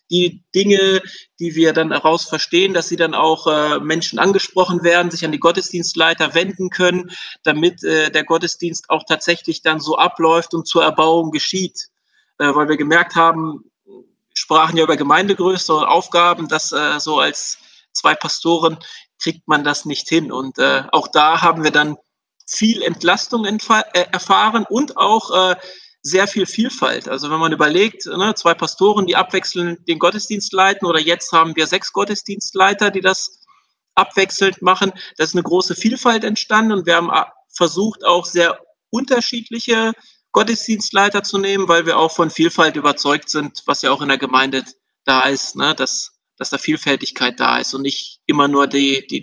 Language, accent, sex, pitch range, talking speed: German, German, male, 160-195 Hz, 165 wpm